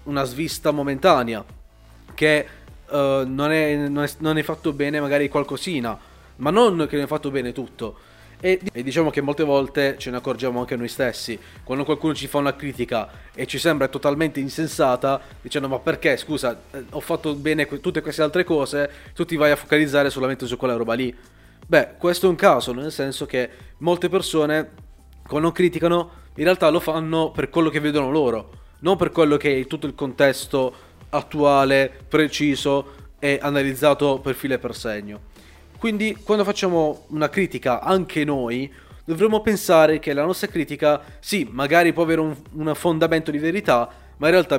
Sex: male